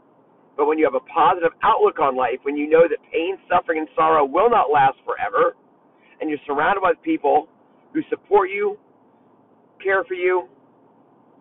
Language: English